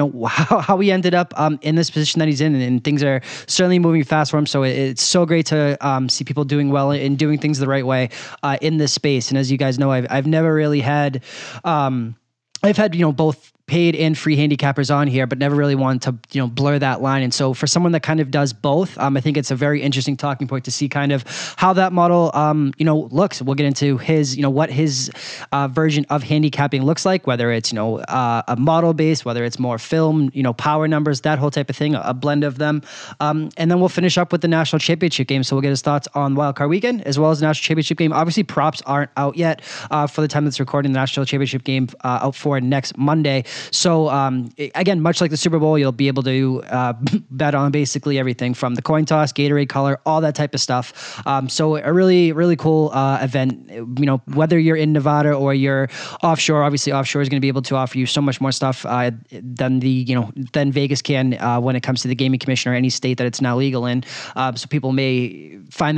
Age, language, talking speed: 20-39, English, 250 wpm